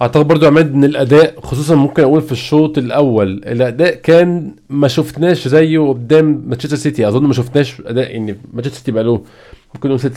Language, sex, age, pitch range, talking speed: Arabic, male, 20-39, 120-145 Hz, 185 wpm